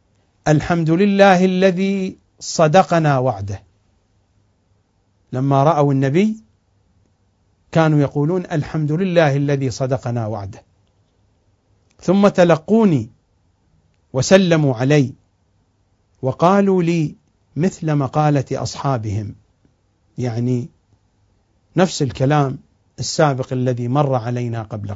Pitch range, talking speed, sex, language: 100-150 Hz, 80 wpm, male, English